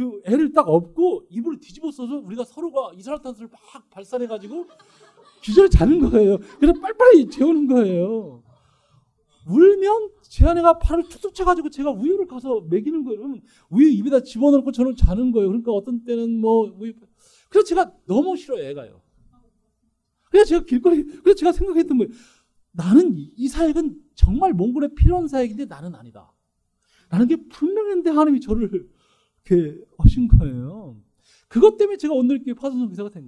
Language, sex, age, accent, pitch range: Korean, male, 40-59, native, 190-315 Hz